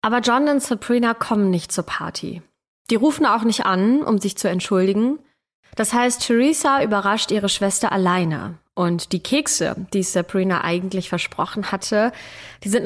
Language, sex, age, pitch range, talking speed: German, female, 20-39, 185-230 Hz, 160 wpm